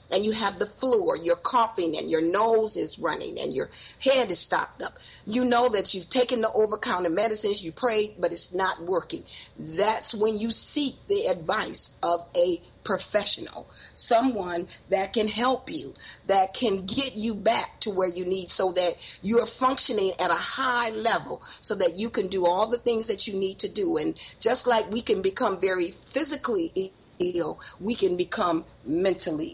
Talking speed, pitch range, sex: 185 wpm, 185-255 Hz, female